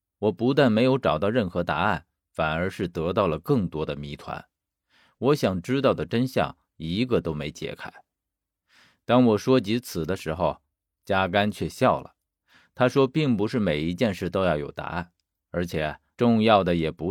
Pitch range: 85-125 Hz